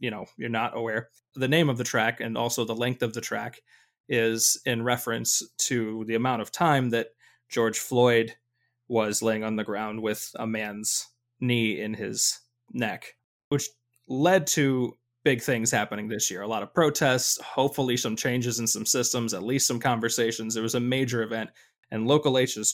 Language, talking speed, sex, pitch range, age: English, 185 wpm, male, 115-135 Hz, 20-39